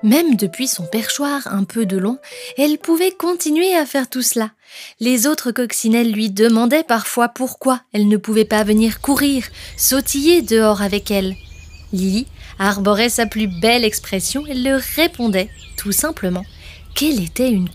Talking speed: 155 wpm